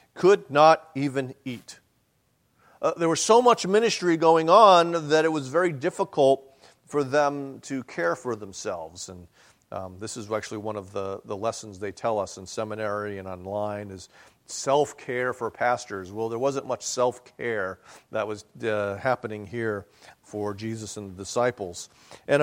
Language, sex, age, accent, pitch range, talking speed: English, male, 40-59, American, 105-150 Hz, 160 wpm